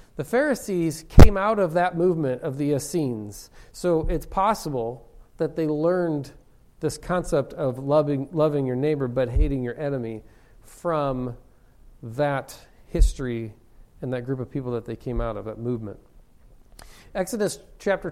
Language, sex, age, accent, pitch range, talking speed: English, male, 40-59, American, 130-165 Hz, 145 wpm